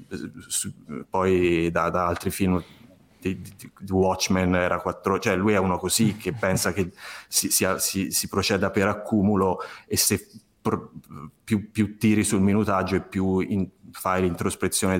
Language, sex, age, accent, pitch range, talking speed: Italian, male, 30-49, native, 95-105 Hz, 140 wpm